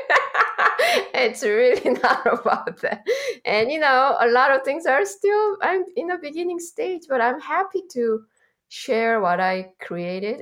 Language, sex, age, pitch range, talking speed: English, female, 20-39, 175-235 Hz, 155 wpm